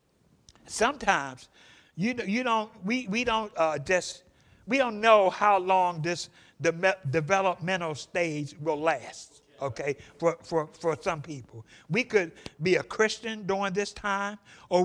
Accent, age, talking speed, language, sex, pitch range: American, 60-79, 145 wpm, English, male, 160-205 Hz